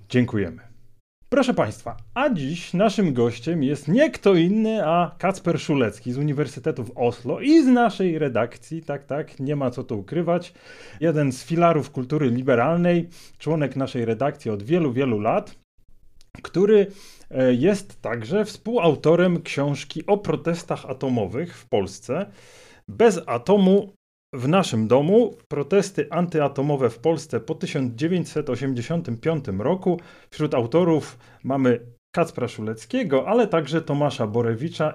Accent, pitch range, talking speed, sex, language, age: native, 125-190 Hz, 125 wpm, male, Polish, 30-49